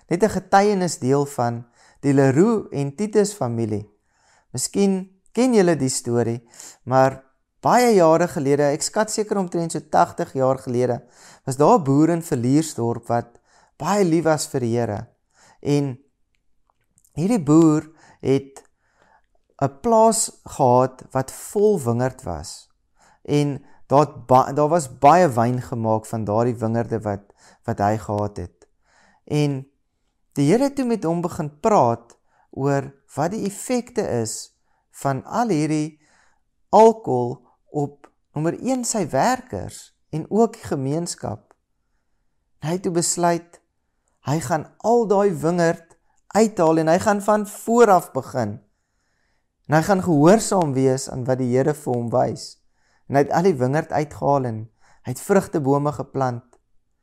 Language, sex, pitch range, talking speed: English, male, 125-175 Hz, 140 wpm